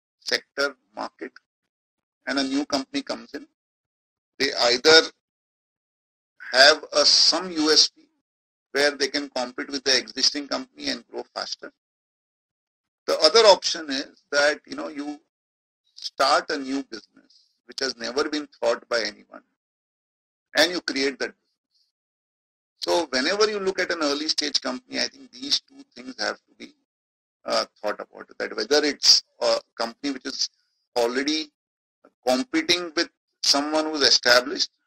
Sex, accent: male, Indian